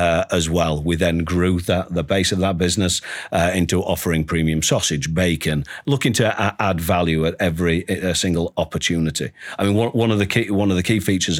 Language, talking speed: English, 200 wpm